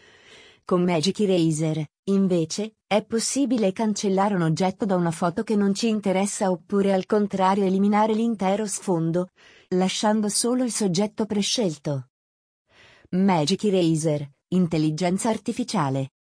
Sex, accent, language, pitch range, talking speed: female, native, Italian, 180-220 Hz, 115 wpm